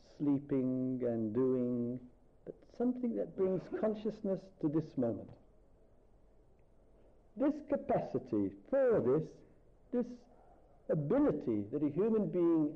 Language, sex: English, male